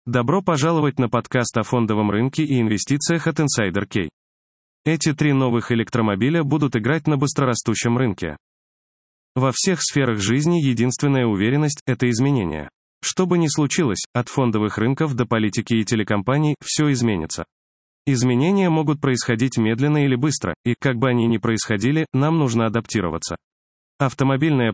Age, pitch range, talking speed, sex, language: 20-39, 110-145 Hz, 140 wpm, male, Russian